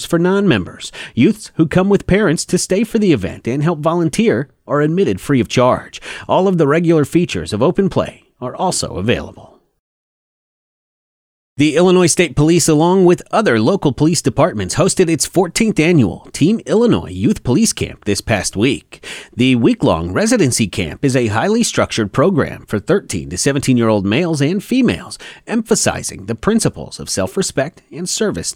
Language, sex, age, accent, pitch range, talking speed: English, male, 30-49, American, 130-180 Hz, 170 wpm